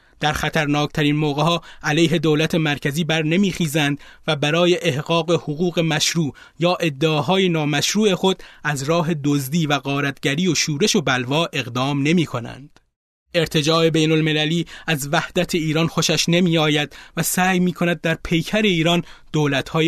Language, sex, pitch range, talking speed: Persian, male, 145-175 Hz, 145 wpm